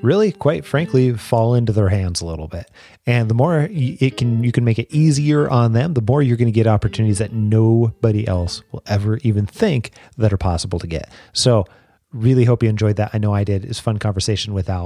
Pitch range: 110-135 Hz